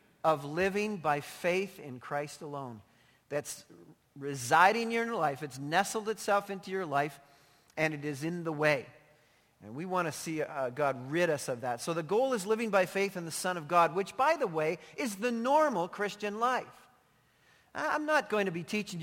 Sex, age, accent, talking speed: male, 40-59, American, 195 wpm